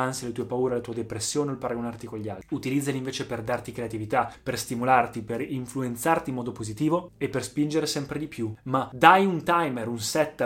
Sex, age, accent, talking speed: male, 20-39, native, 205 wpm